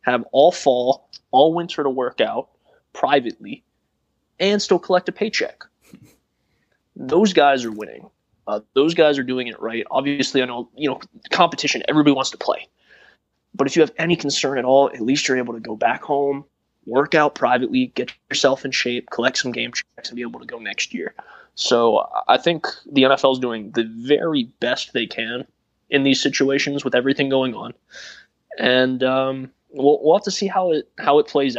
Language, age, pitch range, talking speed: English, 20-39, 125-145 Hz, 190 wpm